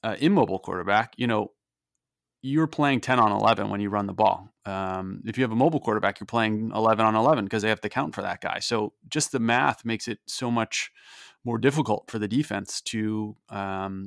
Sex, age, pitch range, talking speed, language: male, 30-49, 105-125 Hz, 215 wpm, English